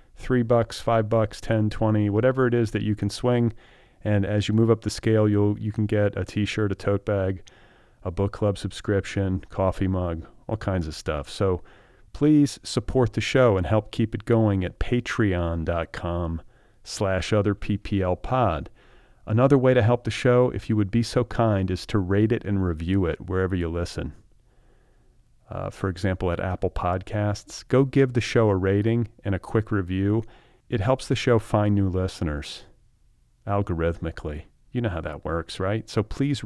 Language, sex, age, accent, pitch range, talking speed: English, male, 40-59, American, 95-115 Hz, 180 wpm